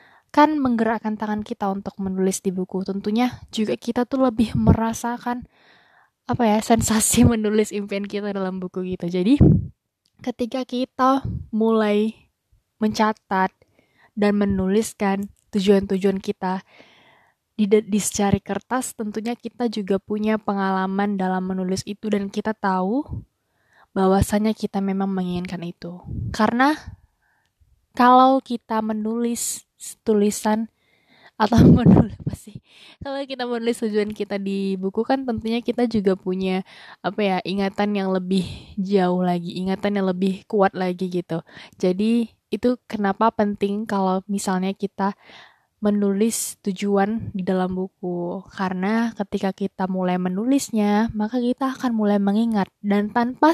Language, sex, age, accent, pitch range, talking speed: Indonesian, female, 20-39, native, 190-230 Hz, 125 wpm